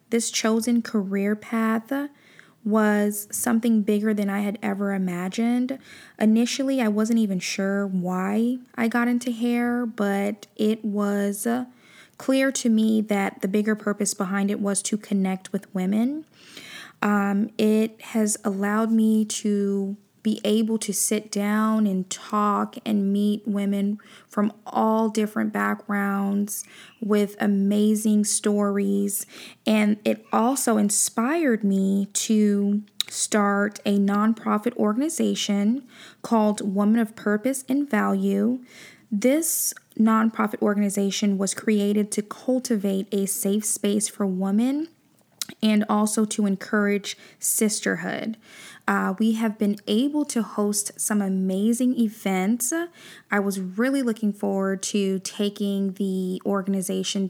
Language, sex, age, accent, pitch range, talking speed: English, female, 20-39, American, 200-225 Hz, 120 wpm